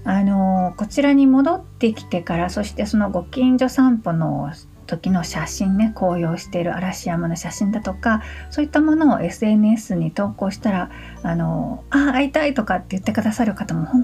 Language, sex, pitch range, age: Japanese, female, 170-240 Hz, 50-69